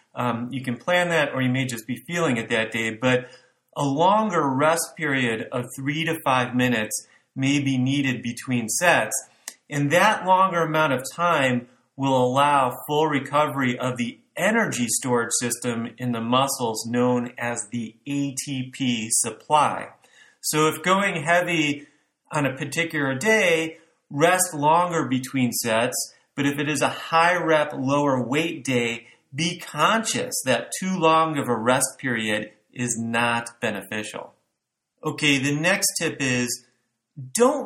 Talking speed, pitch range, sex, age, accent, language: 145 wpm, 120-155 Hz, male, 30-49, American, English